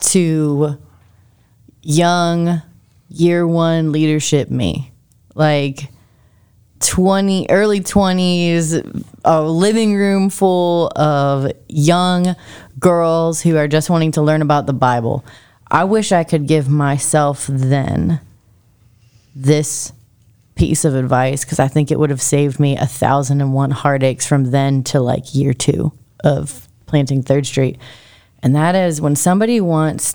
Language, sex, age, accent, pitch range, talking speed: English, female, 20-39, American, 125-160 Hz, 130 wpm